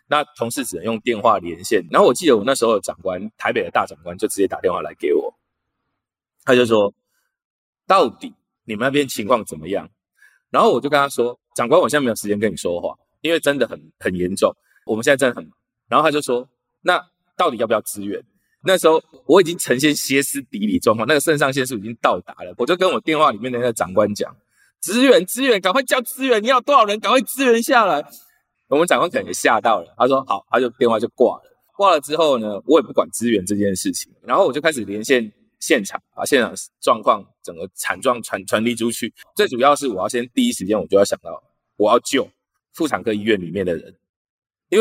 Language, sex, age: Chinese, male, 20-39